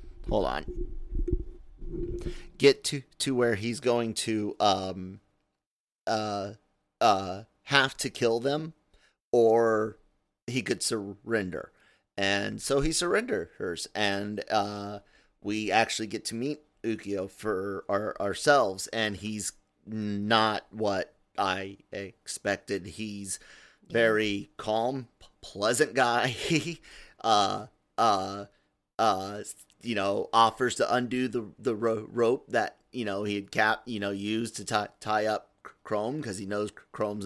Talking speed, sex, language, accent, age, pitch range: 130 wpm, male, English, American, 30-49, 100-115 Hz